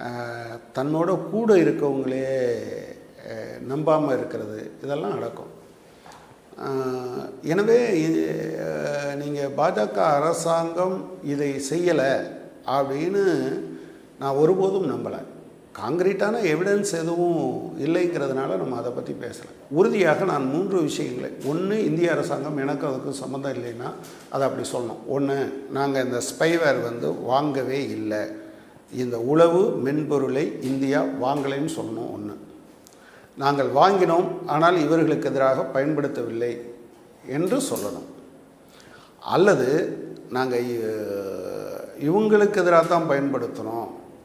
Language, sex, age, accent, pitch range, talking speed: Tamil, male, 50-69, native, 130-170 Hz, 90 wpm